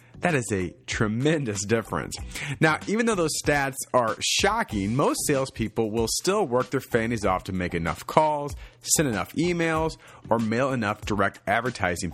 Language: English